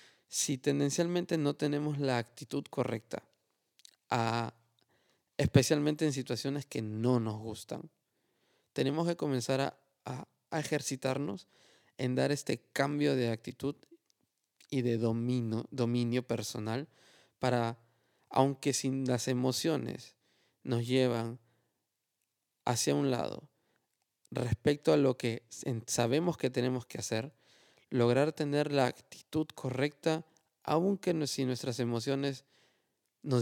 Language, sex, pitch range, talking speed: Spanish, male, 120-150 Hz, 105 wpm